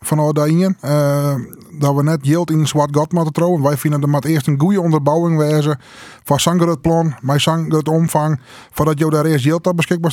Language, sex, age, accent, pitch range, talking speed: Dutch, male, 20-39, Dutch, 145-165 Hz, 215 wpm